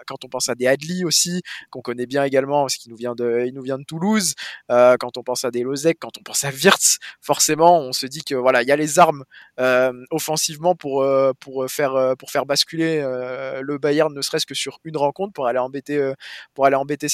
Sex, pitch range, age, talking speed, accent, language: male, 130-155 Hz, 20-39, 230 wpm, French, French